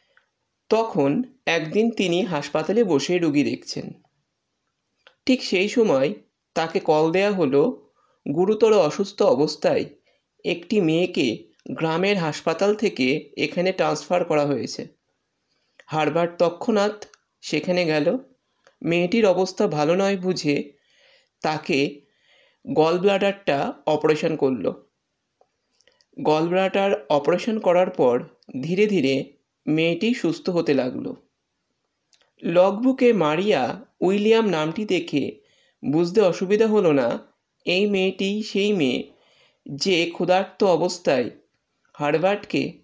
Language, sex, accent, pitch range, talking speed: Bengali, male, native, 160-210 Hz, 95 wpm